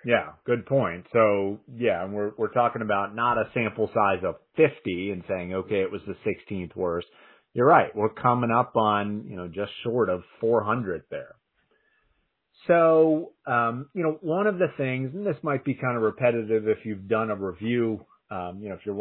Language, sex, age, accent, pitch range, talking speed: English, male, 40-59, American, 105-145 Hz, 195 wpm